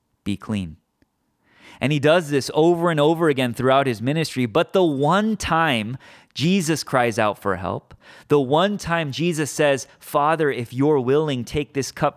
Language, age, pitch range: English, 30-49, 110-150 Hz